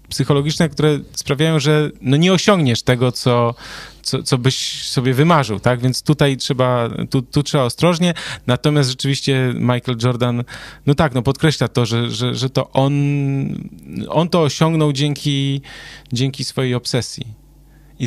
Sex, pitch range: male, 120-145 Hz